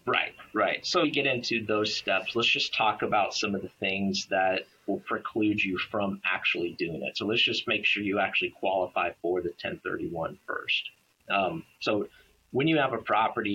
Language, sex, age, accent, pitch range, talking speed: English, male, 30-49, American, 95-115 Hz, 190 wpm